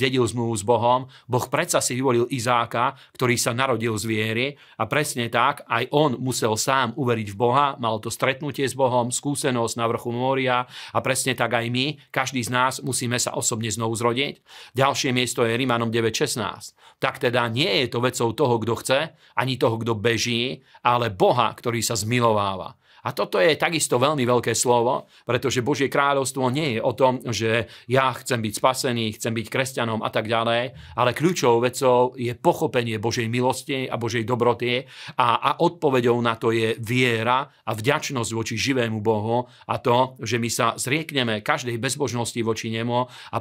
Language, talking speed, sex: Slovak, 175 wpm, male